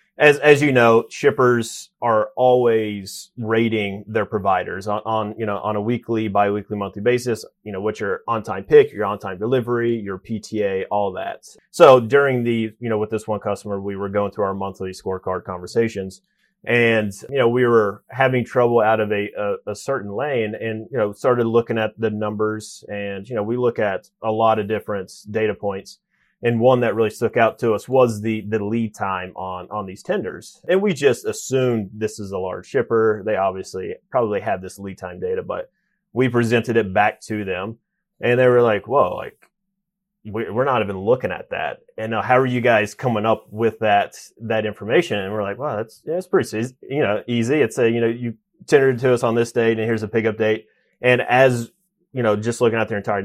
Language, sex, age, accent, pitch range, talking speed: English, male, 30-49, American, 105-125 Hz, 210 wpm